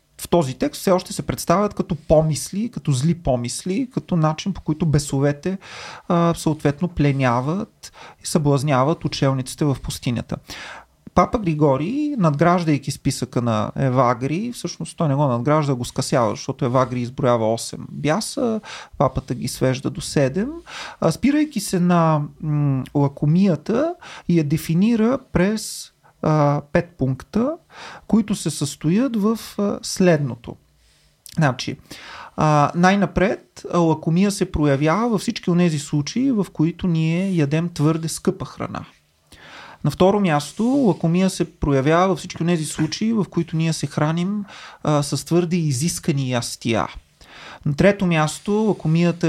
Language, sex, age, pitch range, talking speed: Bulgarian, male, 30-49, 145-185 Hz, 125 wpm